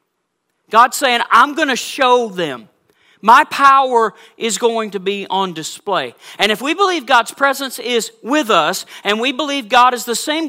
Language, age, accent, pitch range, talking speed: English, 40-59, American, 220-310 Hz, 175 wpm